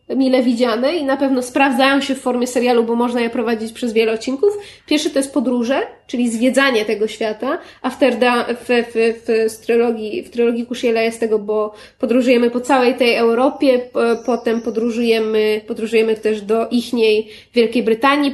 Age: 20-39